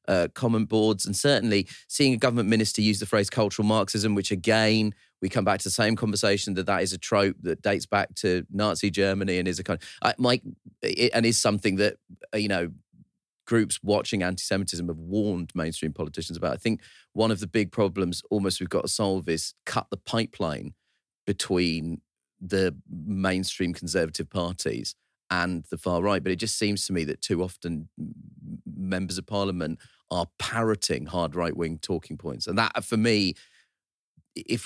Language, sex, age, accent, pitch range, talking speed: English, male, 30-49, British, 90-110 Hz, 180 wpm